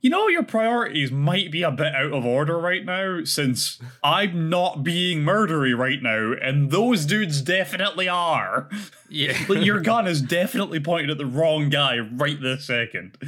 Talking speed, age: 165 wpm, 20-39